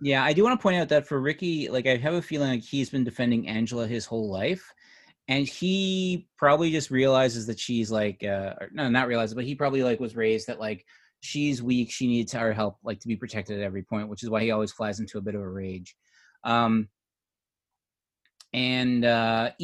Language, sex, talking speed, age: English, male, 215 wpm, 30-49